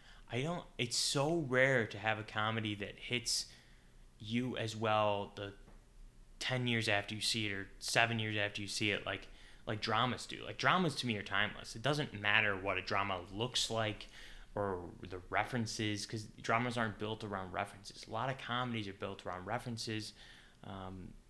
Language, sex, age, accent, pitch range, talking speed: English, male, 10-29, American, 100-125 Hz, 180 wpm